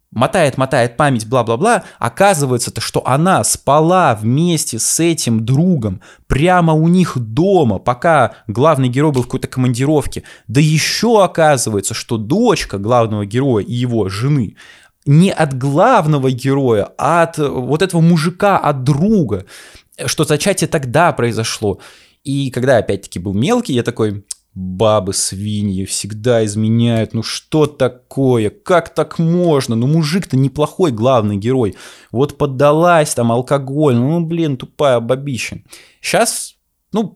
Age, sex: 20-39, male